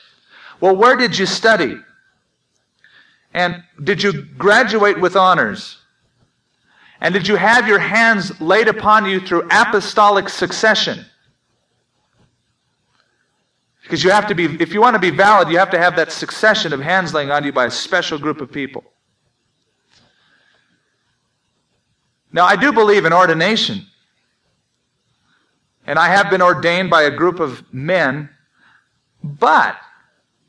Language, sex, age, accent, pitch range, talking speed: English, male, 40-59, American, 150-210 Hz, 135 wpm